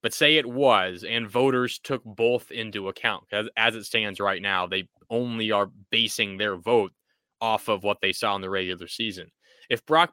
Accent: American